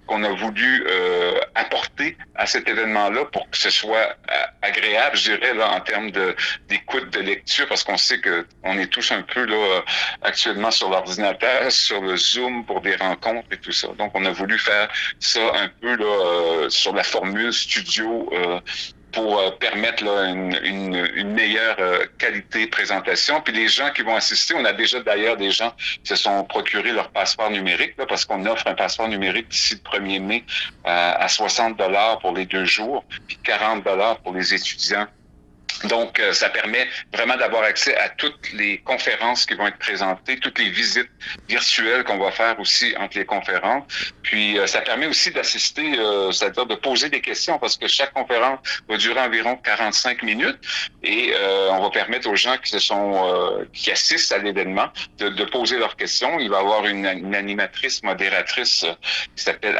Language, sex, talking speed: French, male, 190 wpm